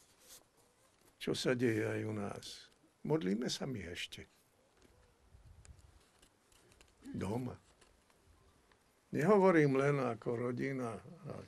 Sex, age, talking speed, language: male, 60-79, 80 wpm, Slovak